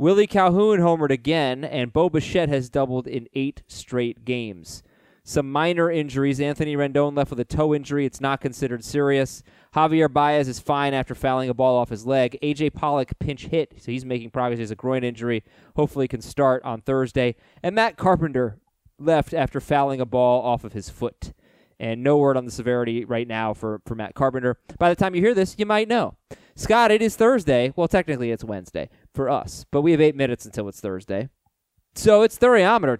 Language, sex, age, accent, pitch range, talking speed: English, male, 20-39, American, 125-170 Hz, 200 wpm